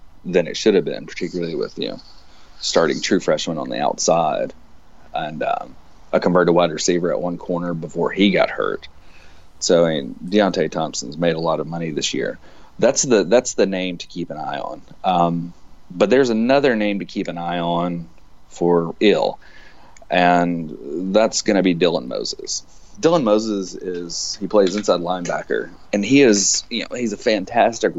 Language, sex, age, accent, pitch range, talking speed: English, male, 30-49, American, 85-100 Hz, 175 wpm